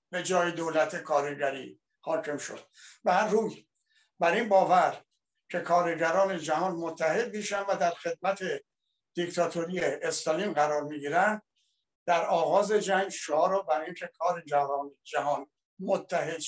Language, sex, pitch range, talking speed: Persian, male, 160-205 Hz, 125 wpm